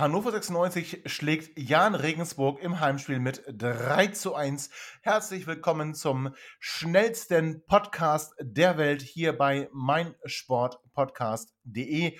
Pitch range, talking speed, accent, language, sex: 115-175 Hz, 105 wpm, German, German, male